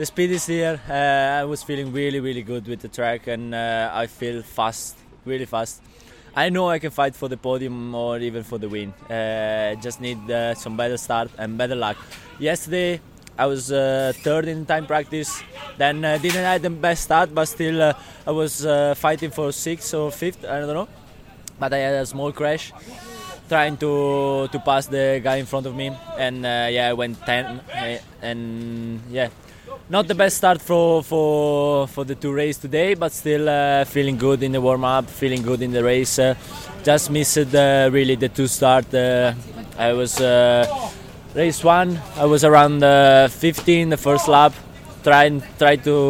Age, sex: 20-39, male